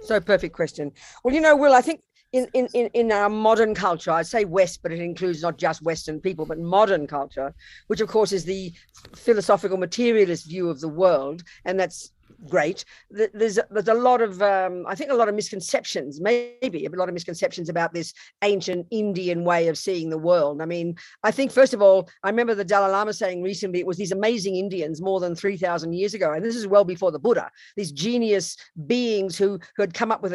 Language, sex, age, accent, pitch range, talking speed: English, female, 50-69, Australian, 175-215 Hz, 215 wpm